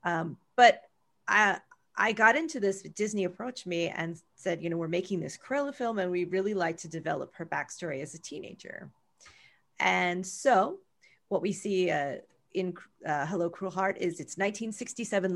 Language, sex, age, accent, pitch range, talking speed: English, female, 30-49, American, 175-205 Hz, 170 wpm